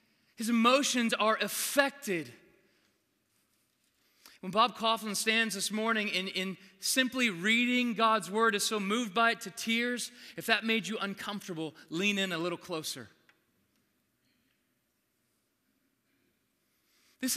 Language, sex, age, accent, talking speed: English, male, 30-49, American, 115 wpm